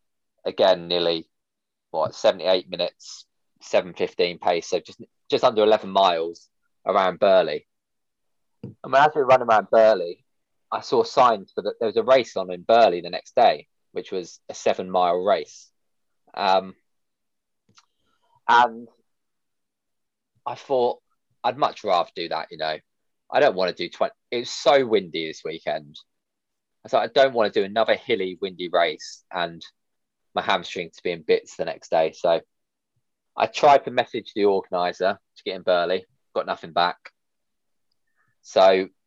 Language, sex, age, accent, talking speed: English, male, 20-39, British, 150 wpm